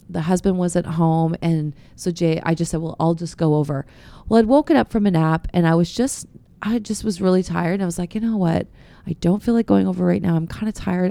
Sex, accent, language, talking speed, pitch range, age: female, American, English, 275 wpm, 165-215 Hz, 30-49